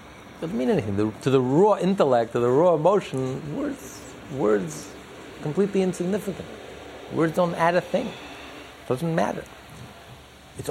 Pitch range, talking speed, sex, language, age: 105-175 Hz, 145 wpm, male, English, 50-69